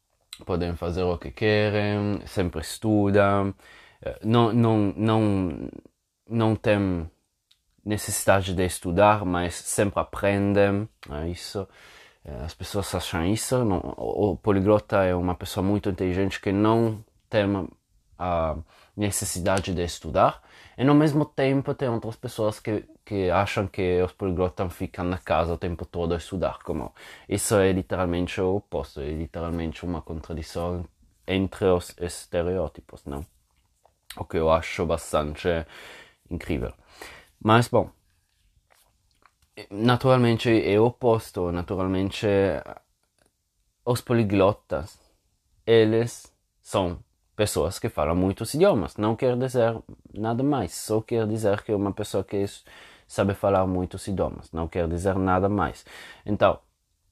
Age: 20-39